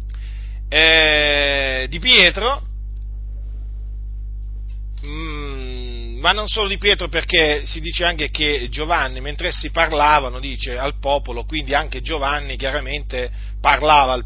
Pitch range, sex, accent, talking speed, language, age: 120-190 Hz, male, native, 105 wpm, Italian, 40-59